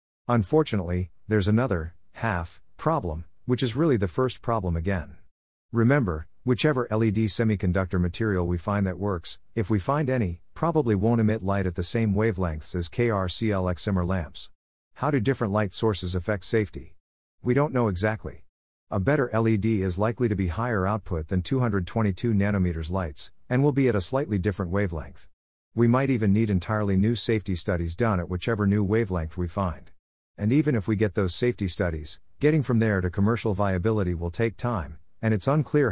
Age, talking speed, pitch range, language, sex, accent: 50-69, 170 wpm, 90-115 Hz, English, male, American